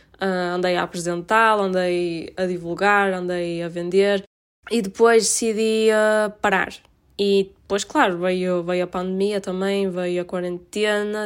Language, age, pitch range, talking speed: Portuguese, 10-29, 185-215 Hz, 140 wpm